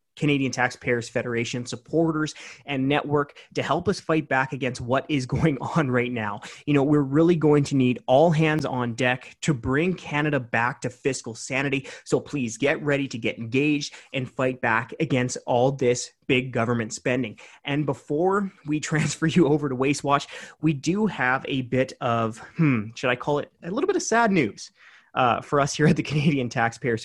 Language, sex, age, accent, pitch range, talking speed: English, male, 30-49, American, 125-165 Hz, 190 wpm